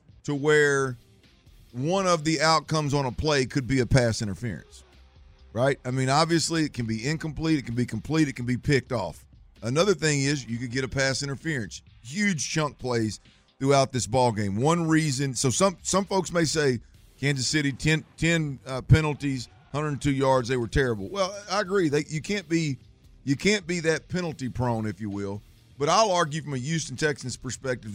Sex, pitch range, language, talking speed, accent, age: male, 115-155 Hz, English, 190 wpm, American, 40-59